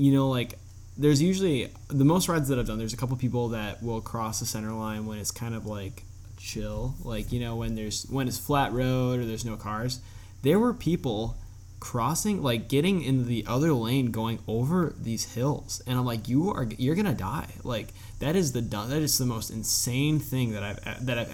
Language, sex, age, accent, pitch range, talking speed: English, male, 10-29, American, 105-135 Hz, 215 wpm